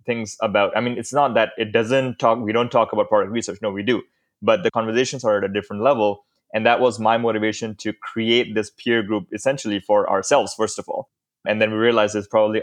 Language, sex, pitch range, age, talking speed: English, male, 100-115 Hz, 20-39, 235 wpm